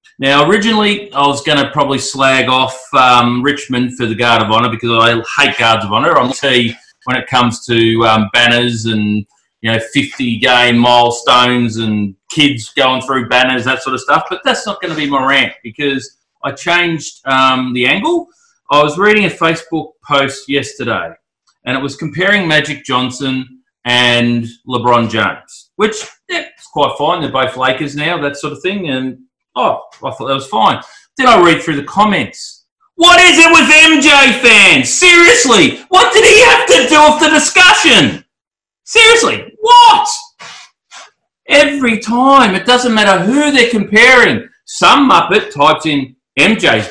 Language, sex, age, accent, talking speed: English, male, 30-49, Australian, 170 wpm